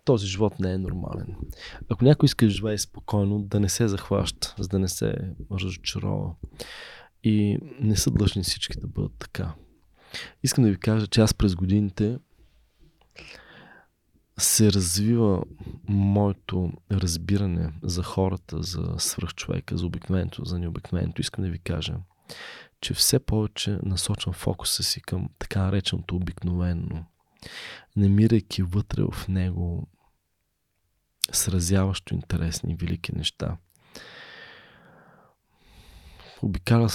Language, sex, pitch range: Bulgarian, male, 90-105 Hz